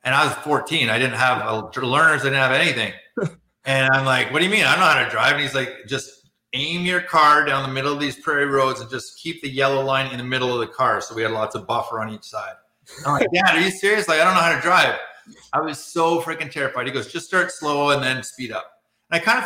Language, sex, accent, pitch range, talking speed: English, male, American, 125-155 Hz, 285 wpm